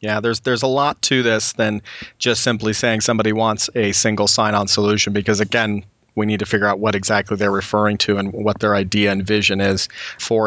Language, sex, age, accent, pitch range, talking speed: English, male, 40-59, American, 110-125 Hz, 210 wpm